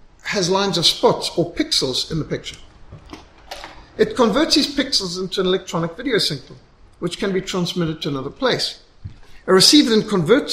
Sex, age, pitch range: male, 60-79, 155-210 Hz